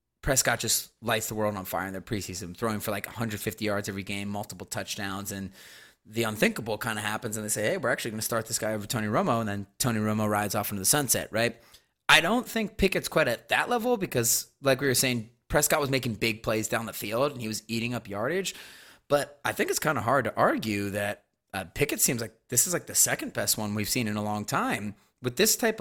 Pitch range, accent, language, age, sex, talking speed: 110-140 Hz, American, English, 30-49, male, 245 wpm